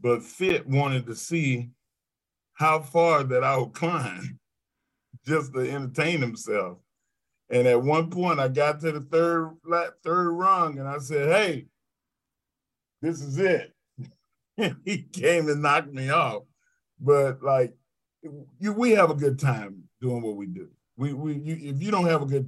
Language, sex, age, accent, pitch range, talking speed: English, male, 40-59, American, 120-145 Hz, 165 wpm